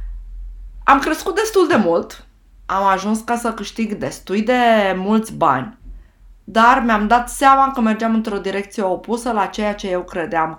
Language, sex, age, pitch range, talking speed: Romanian, female, 20-39, 190-265 Hz, 160 wpm